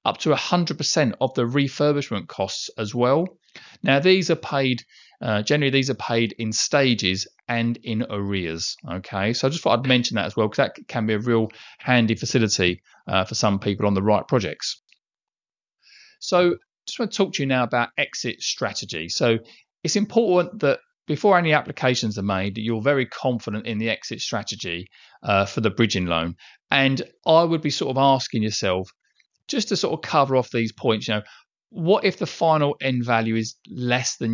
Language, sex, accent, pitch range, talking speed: English, male, British, 110-145 Hz, 190 wpm